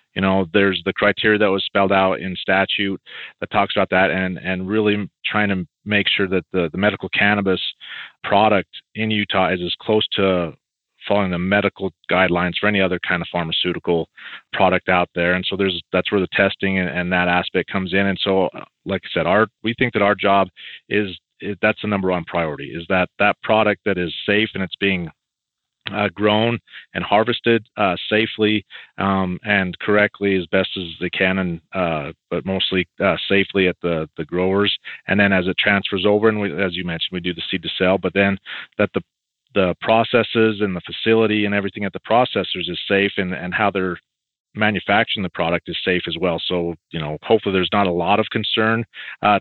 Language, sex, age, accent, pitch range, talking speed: English, male, 40-59, American, 90-105 Hz, 205 wpm